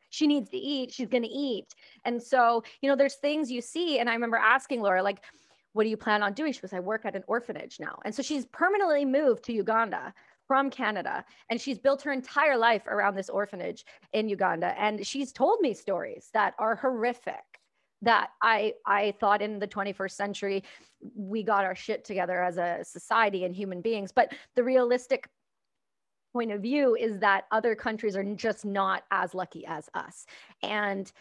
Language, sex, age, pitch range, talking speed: English, female, 30-49, 200-255 Hz, 195 wpm